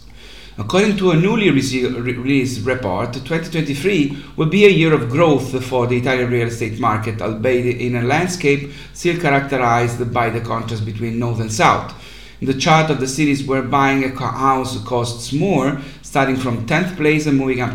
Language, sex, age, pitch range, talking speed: English, male, 50-69, 125-150 Hz, 170 wpm